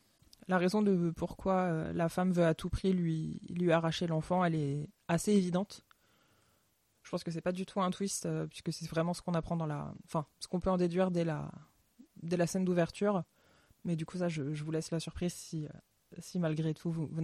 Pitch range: 160-185 Hz